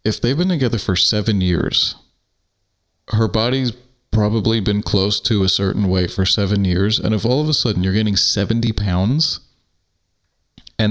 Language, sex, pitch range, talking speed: English, male, 95-120 Hz, 165 wpm